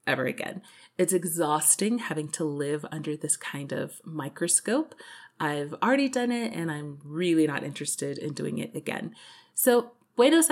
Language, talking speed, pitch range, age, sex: English, 155 wpm, 160-230 Hz, 30-49, female